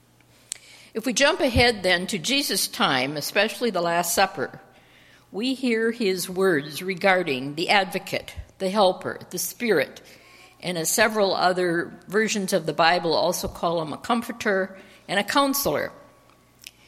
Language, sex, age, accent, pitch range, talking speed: English, female, 60-79, American, 175-220 Hz, 140 wpm